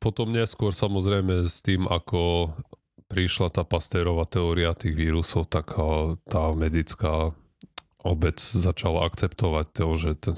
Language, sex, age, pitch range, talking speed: Slovak, male, 30-49, 80-100 Hz, 120 wpm